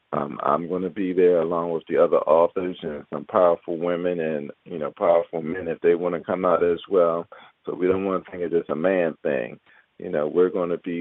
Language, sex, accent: English, male, American